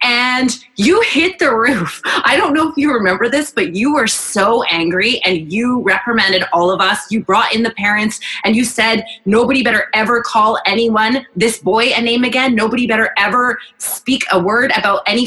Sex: female